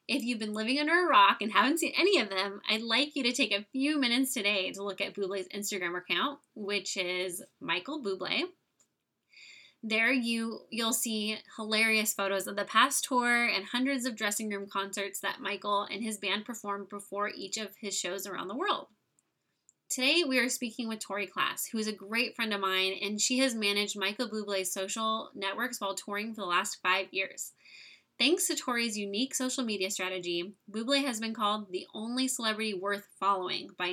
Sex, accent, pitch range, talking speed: female, American, 200-250 Hz, 190 wpm